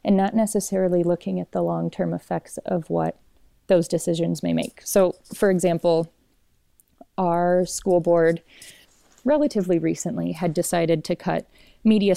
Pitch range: 165-200 Hz